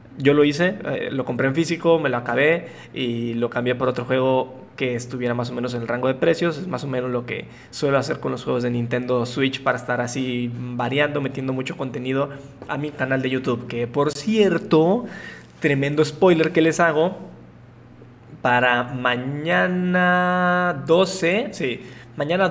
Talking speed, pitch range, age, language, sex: 175 wpm, 125-165 Hz, 20-39, Spanish, male